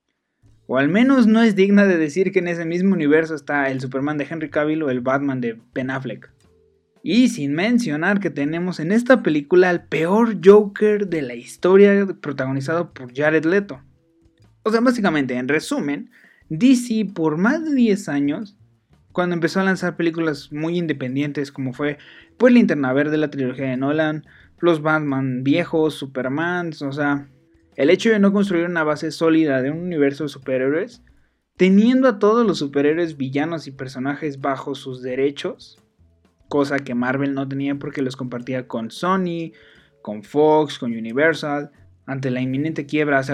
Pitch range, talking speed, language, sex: 135-180 Hz, 165 wpm, Spanish, male